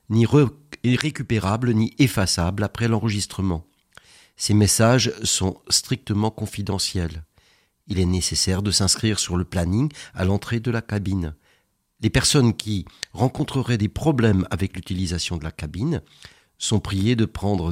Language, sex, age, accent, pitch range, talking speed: French, male, 50-69, French, 95-120 Hz, 130 wpm